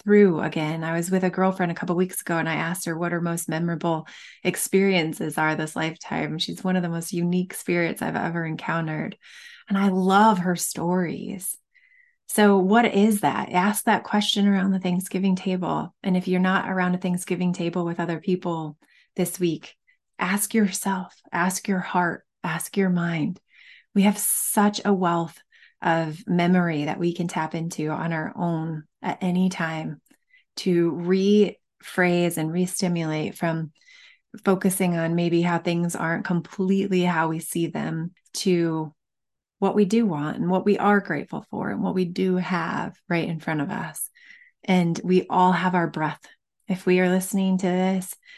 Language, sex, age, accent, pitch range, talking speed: English, female, 20-39, American, 170-195 Hz, 170 wpm